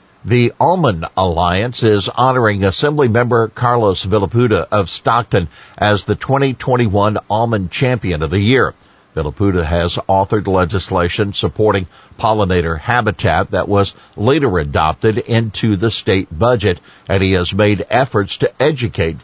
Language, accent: English, American